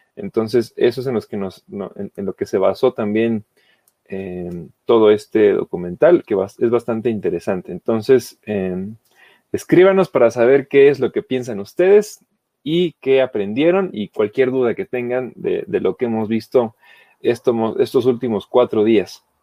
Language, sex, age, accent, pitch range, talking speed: Spanish, male, 30-49, Mexican, 115-155 Hz, 160 wpm